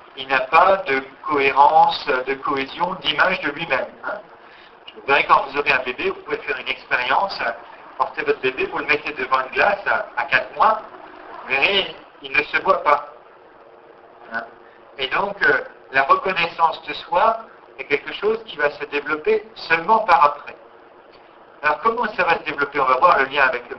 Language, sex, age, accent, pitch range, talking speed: French, male, 50-69, French, 135-215 Hz, 190 wpm